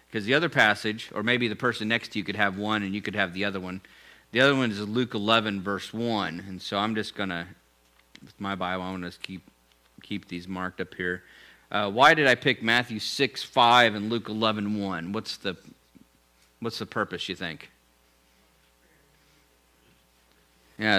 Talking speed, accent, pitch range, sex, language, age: 190 wpm, American, 85-110 Hz, male, English, 40-59